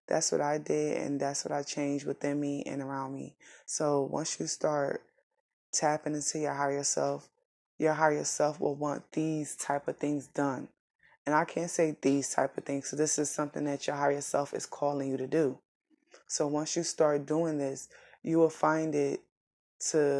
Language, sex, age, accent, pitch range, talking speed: English, female, 20-39, American, 140-155 Hz, 195 wpm